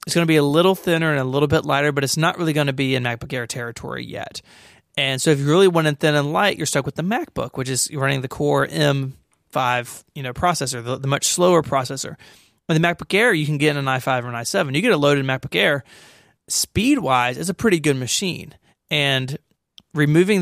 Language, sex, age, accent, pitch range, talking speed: English, male, 30-49, American, 130-155 Hz, 235 wpm